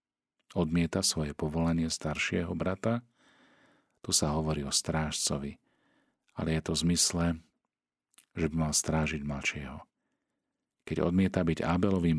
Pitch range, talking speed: 75-90 Hz, 120 wpm